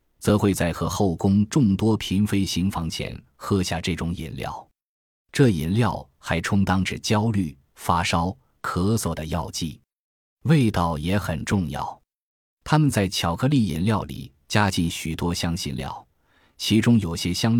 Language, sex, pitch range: Chinese, male, 85-110 Hz